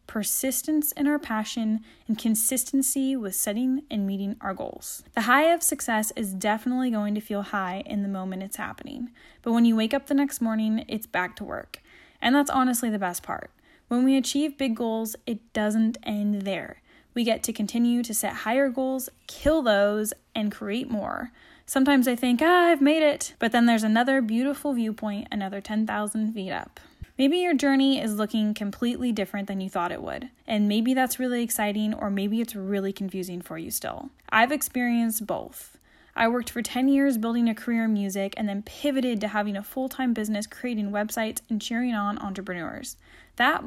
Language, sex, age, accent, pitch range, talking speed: English, female, 10-29, American, 210-260 Hz, 190 wpm